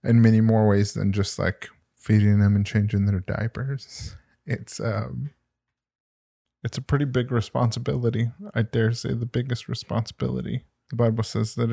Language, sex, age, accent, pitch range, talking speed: English, male, 20-39, American, 105-120 Hz, 155 wpm